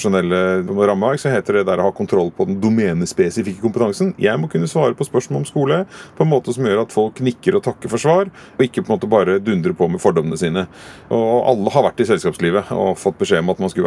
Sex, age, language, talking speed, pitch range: male, 30-49, English, 235 wpm, 90-130 Hz